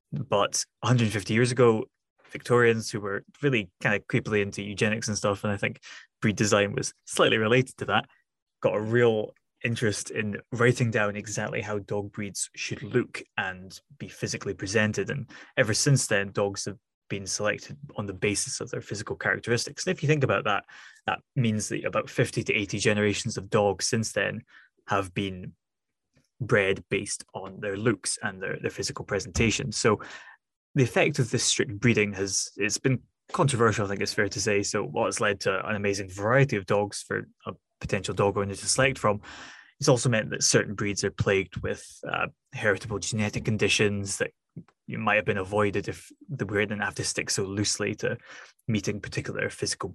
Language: English